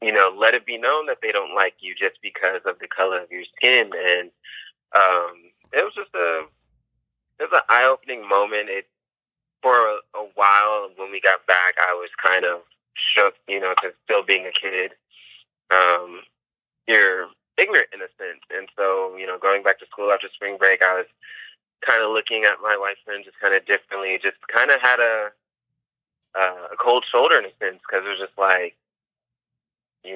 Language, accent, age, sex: English, American, 20-39, male